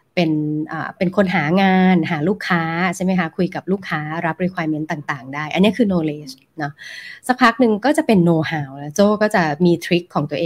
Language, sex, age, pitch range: Thai, female, 20-39, 155-205 Hz